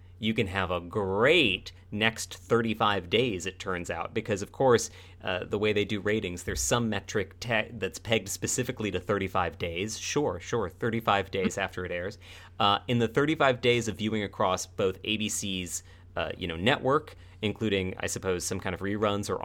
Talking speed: 180 wpm